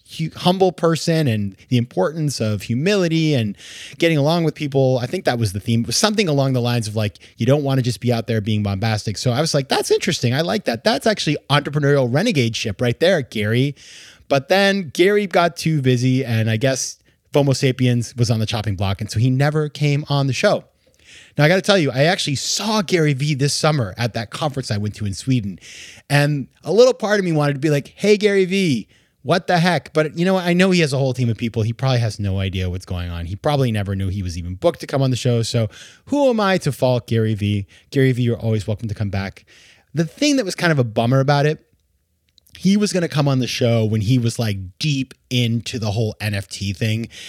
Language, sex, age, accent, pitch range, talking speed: English, male, 30-49, American, 110-155 Hz, 240 wpm